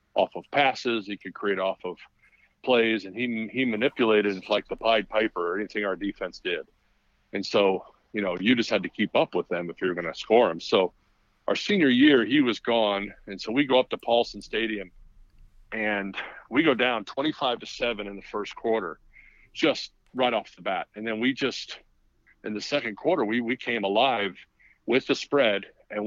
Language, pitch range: English, 100-125 Hz